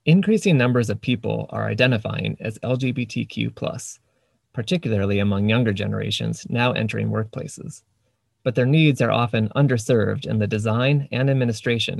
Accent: American